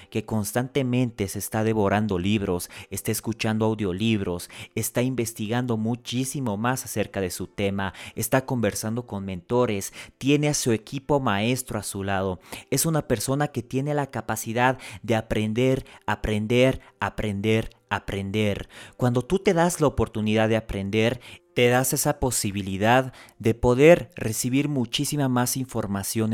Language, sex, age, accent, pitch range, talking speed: Spanish, male, 30-49, Mexican, 105-125 Hz, 135 wpm